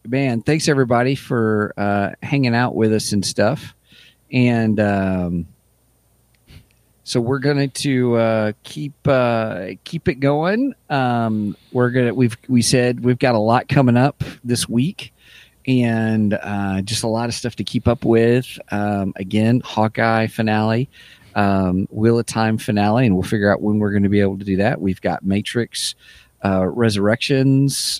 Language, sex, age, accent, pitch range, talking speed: English, male, 40-59, American, 105-130 Hz, 160 wpm